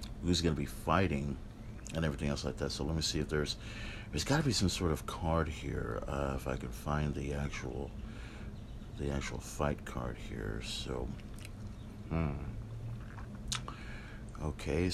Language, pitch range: English, 75-110 Hz